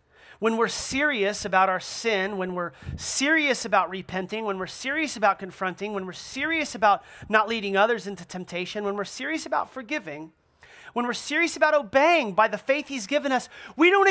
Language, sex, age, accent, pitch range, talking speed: English, male, 30-49, American, 200-310 Hz, 185 wpm